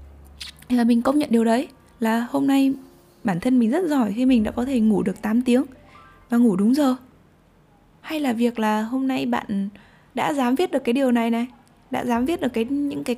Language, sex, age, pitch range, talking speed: Vietnamese, female, 10-29, 195-255 Hz, 230 wpm